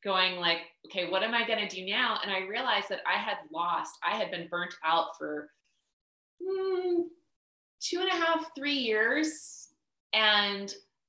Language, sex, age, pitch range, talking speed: English, female, 20-39, 180-220 Hz, 170 wpm